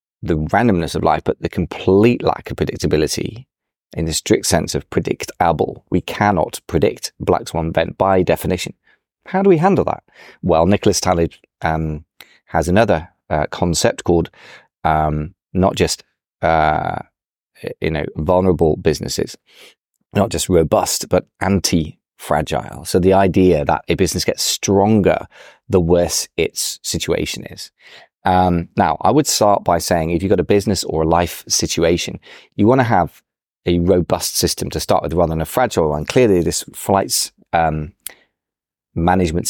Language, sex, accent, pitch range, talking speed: English, male, British, 80-95 Hz, 150 wpm